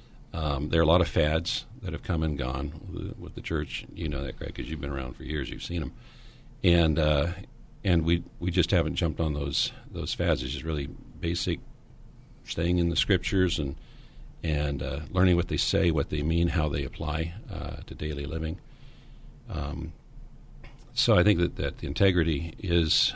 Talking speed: 190 wpm